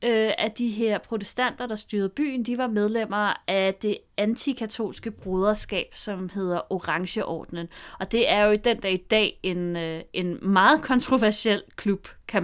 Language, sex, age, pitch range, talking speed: Danish, female, 30-49, 190-230 Hz, 155 wpm